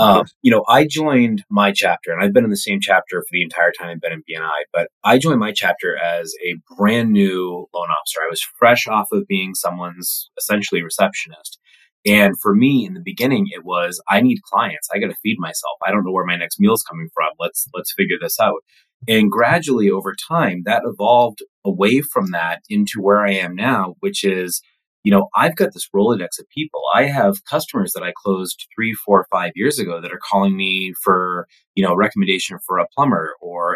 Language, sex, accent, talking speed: English, male, American, 215 wpm